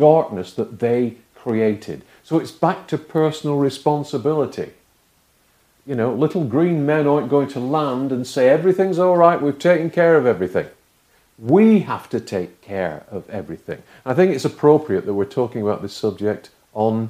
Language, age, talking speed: English, 50-69, 165 wpm